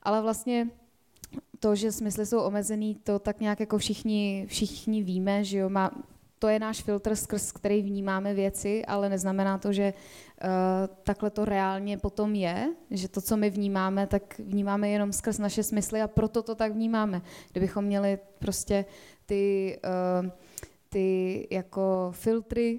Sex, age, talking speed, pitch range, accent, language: female, 20-39, 145 wpm, 190-215 Hz, native, Czech